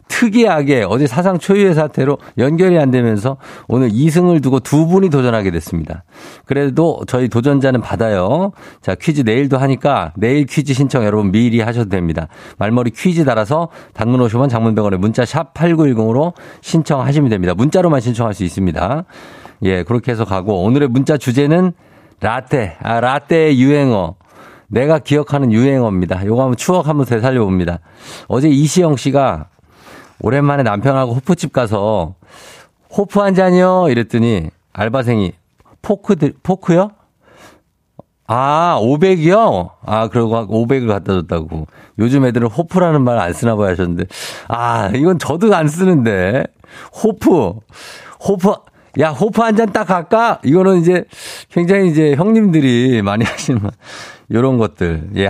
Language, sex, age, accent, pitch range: Korean, male, 50-69, native, 110-170 Hz